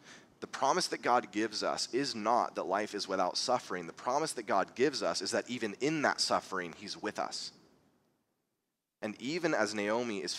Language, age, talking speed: English, 30-49, 190 wpm